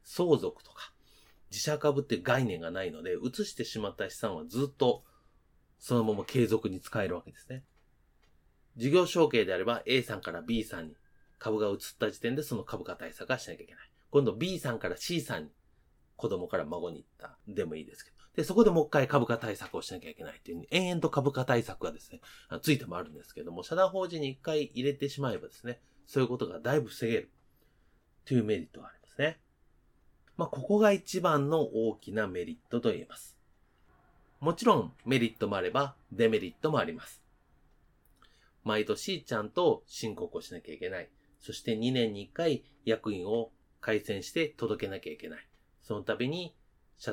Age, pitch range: 30-49, 110-160 Hz